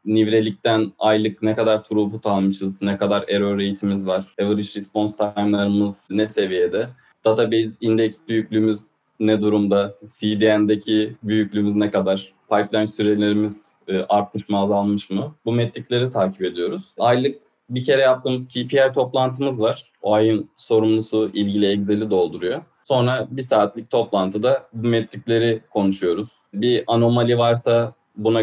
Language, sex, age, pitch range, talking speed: Turkish, male, 20-39, 100-110 Hz, 125 wpm